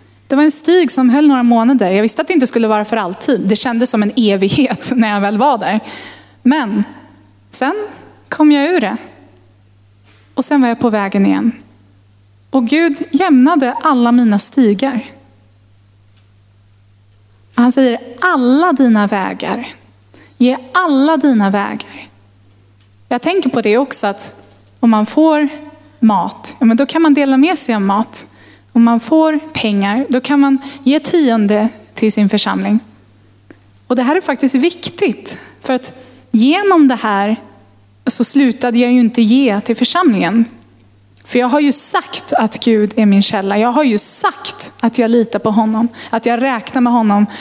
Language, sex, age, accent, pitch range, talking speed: Swedish, female, 20-39, native, 200-270 Hz, 160 wpm